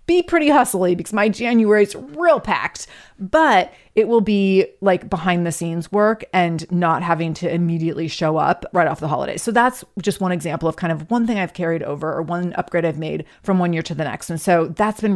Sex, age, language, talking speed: female, 30-49, English, 220 wpm